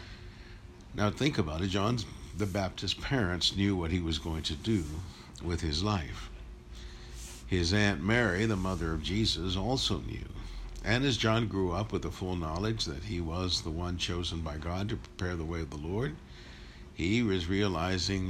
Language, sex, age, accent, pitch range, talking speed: English, male, 60-79, American, 80-105 Hz, 175 wpm